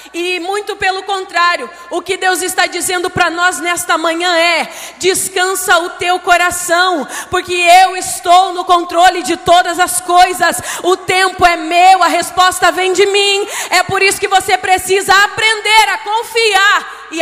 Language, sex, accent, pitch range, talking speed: Portuguese, female, Brazilian, 360-405 Hz, 160 wpm